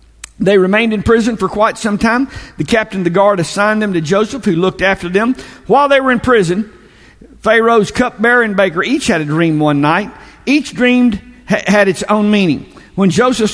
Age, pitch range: 50-69, 150-245 Hz